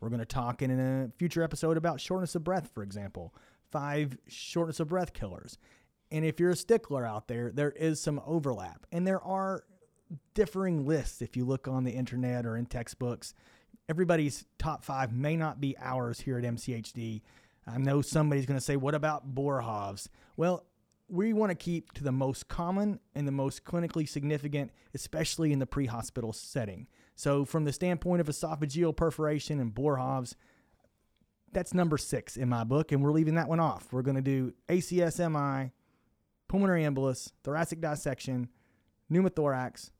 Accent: American